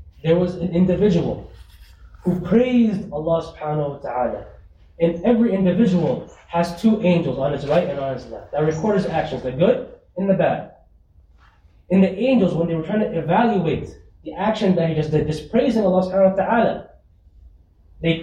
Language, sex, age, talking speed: English, male, 20-39, 180 wpm